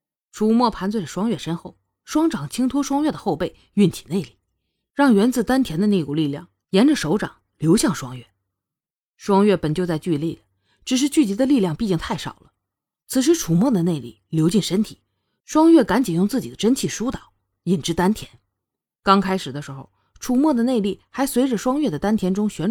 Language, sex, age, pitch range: Chinese, female, 20-39, 160-255 Hz